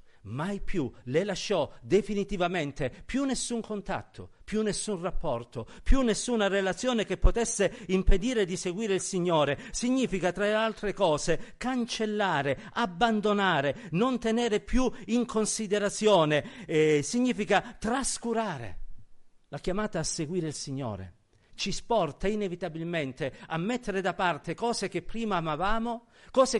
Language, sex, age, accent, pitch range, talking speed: Italian, male, 50-69, native, 165-225 Hz, 120 wpm